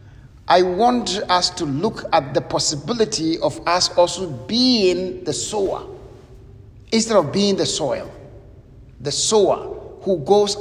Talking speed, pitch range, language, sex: 130 wpm, 125-200 Hz, English, male